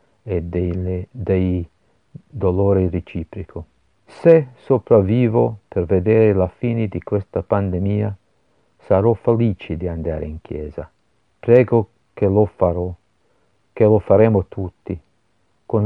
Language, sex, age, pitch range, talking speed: Italian, male, 50-69, 90-110 Hz, 110 wpm